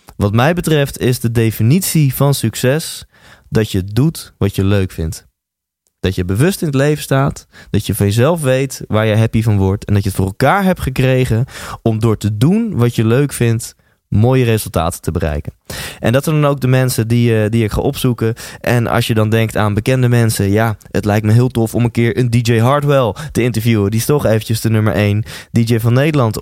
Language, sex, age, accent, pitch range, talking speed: Dutch, male, 20-39, Dutch, 105-135 Hz, 220 wpm